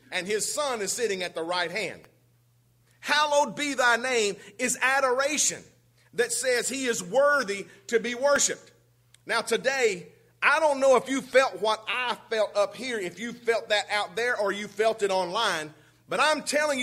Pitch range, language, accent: 185-270 Hz, English, American